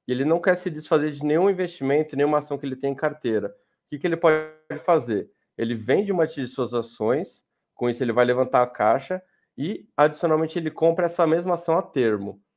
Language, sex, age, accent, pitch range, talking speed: Portuguese, male, 20-39, Brazilian, 125-160 Hz, 205 wpm